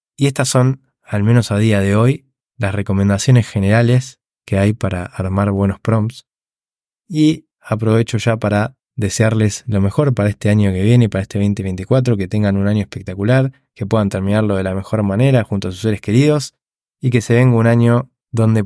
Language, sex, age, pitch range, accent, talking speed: Spanish, male, 20-39, 100-125 Hz, Argentinian, 185 wpm